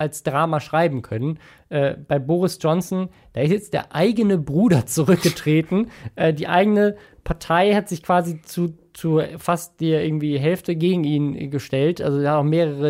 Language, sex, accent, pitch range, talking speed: German, male, German, 145-175 Hz, 165 wpm